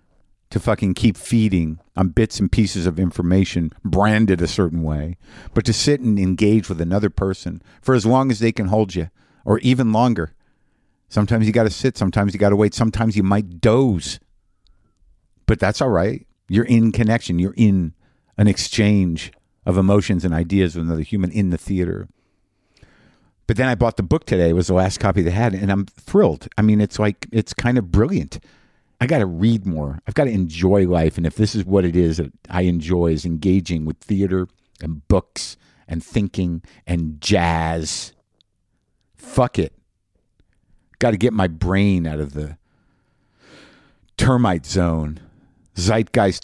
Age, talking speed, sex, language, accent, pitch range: 50-69, 175 wpm, male, English, American, 85-105 Hz